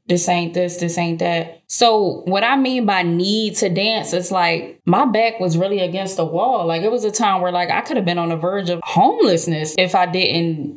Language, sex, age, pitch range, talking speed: English, female, 10-29, 170-205 Hz, 235 wpm